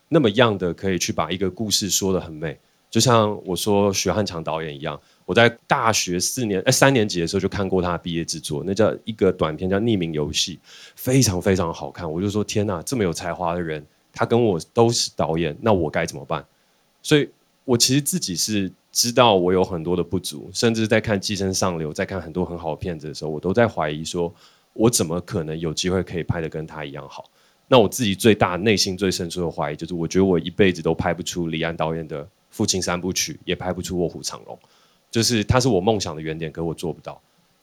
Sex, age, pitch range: male, 30-49, 85-110 Hz